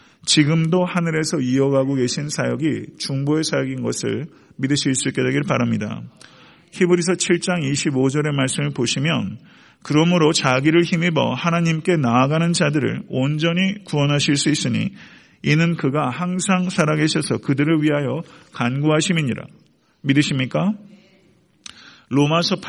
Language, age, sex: Korean, 40-59, male